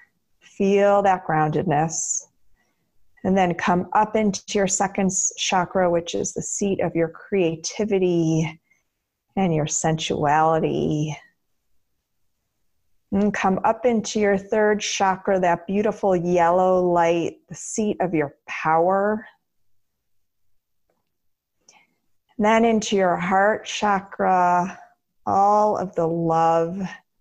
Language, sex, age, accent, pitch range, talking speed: English, female, 40-59, American, 135-190 Hz, 105 wpm